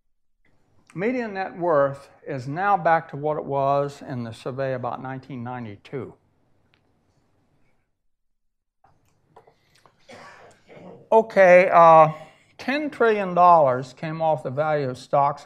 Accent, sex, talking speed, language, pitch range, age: American, male, 90 wpm, English, 130-165 Hz, 60-79